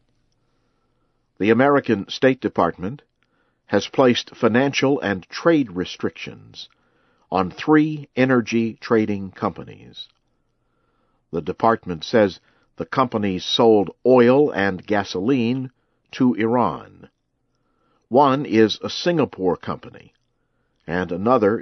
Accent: American